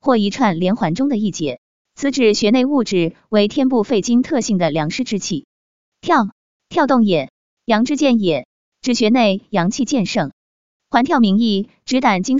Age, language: 20-39, Chinese